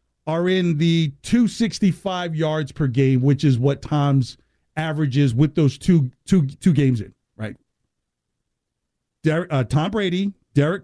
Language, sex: English, male